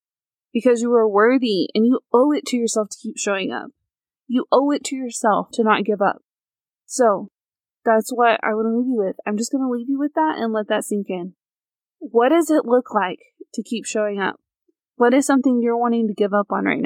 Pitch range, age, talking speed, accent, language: 215-255 Hz, 20-39, 230 wpm, American, English